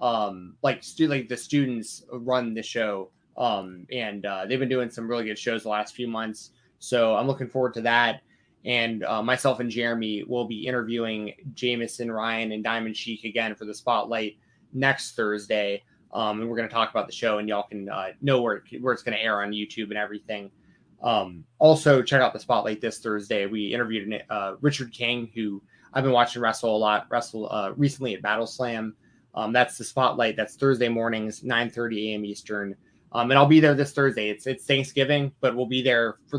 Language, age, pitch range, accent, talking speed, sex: English, 20-39, 110-130 Hz, American, 205 wpm, male